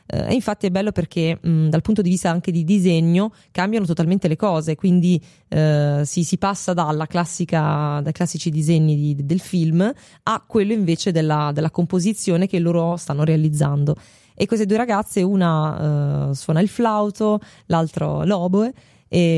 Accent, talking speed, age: native, 165 wpm, 20-39